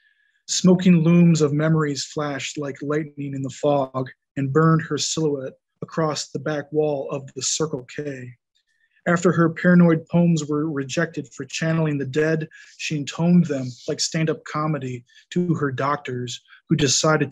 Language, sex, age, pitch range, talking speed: English, male, 20-39, 140-160 Hz, 150 wpm